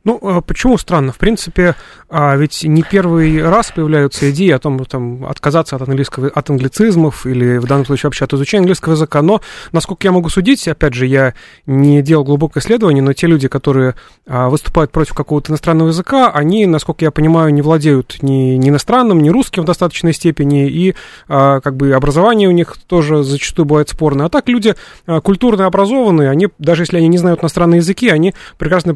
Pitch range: 145-180 Hz